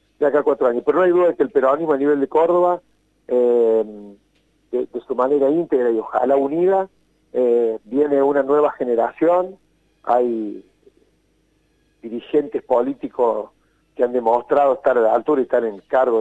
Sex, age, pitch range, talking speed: male, 40-59, 120-170 Hz, 165 wpm